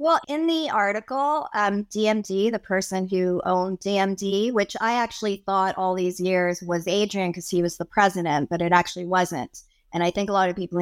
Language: English